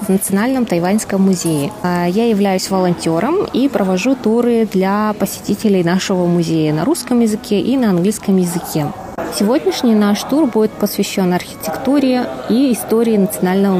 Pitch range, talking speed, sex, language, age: 185-235 Hz, 130 wpm, female, Russian, 20-39